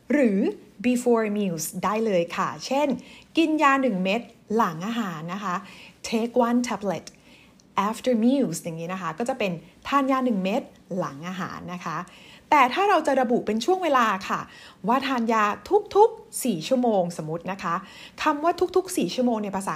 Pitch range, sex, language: 185-265 Hz, female, Thai